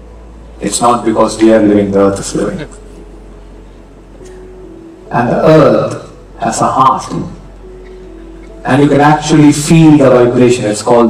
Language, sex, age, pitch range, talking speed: English, male, 50-69, 110-150 Hz, 135 wpm